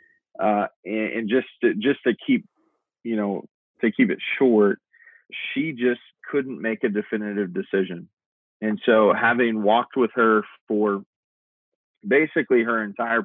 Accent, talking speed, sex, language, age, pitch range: American, 135 wpm, male, English, 30-49, 100-125 Hz